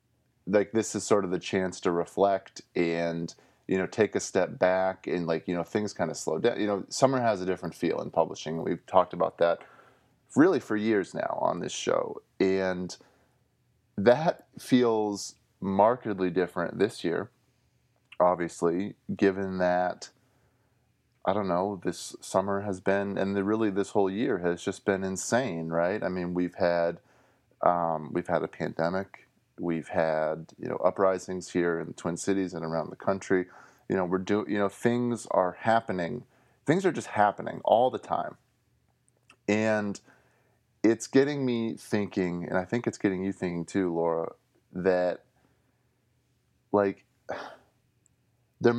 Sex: male